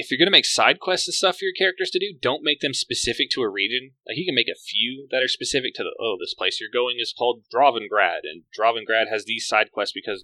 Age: 20-39